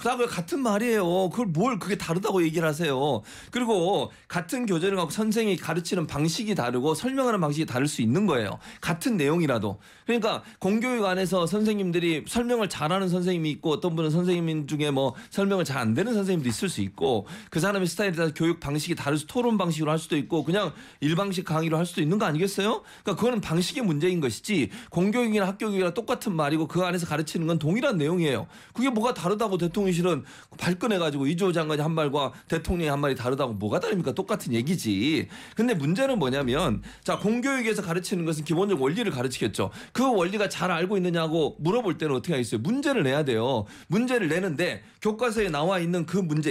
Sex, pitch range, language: male, 160-210 Hz, Korean